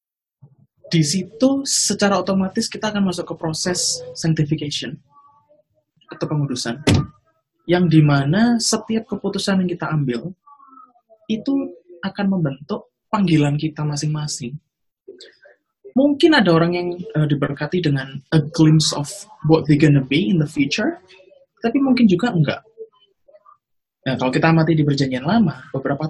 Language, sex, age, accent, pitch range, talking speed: Indonesian, male, 20-39, native, 145-220 Hz, 125 wpm